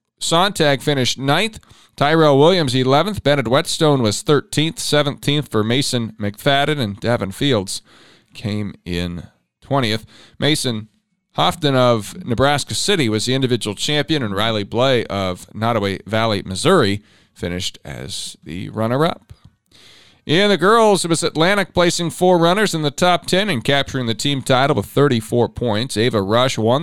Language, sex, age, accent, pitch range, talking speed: English, male, 40-59, American, 110-155 Hz, 145 wpm